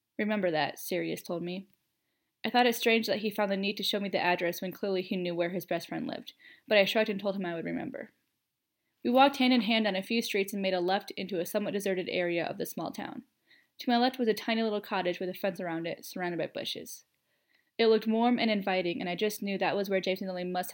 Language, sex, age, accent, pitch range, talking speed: English, female, 10-29, American, 185-230 Hz, 265 wpm